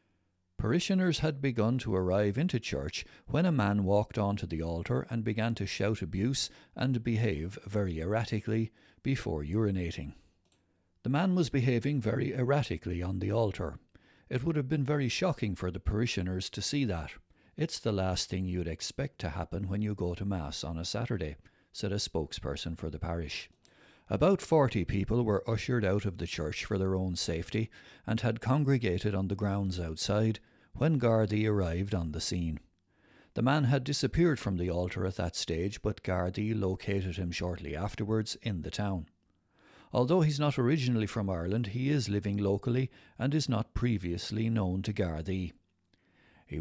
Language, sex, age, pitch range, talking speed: English, male, 60-79, 90-120 Hz, 170 wpm